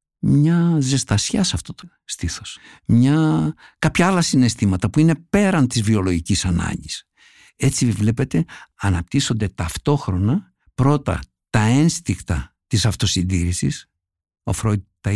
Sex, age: male, 60-79